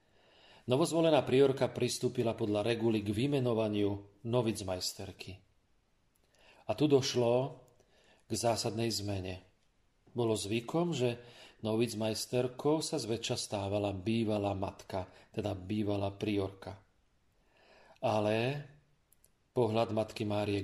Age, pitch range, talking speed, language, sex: 40-59, 105-120 Hz, 85 wpm, Slovak, male